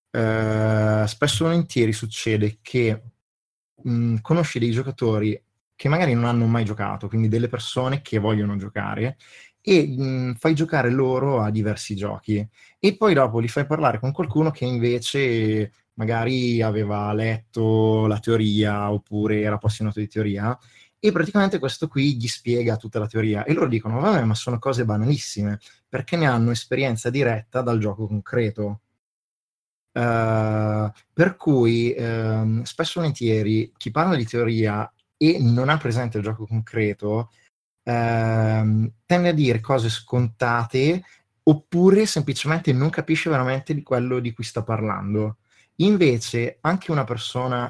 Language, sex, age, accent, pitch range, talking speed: Italian, male, 20-39, native, 110-135 Hz, 140 wpm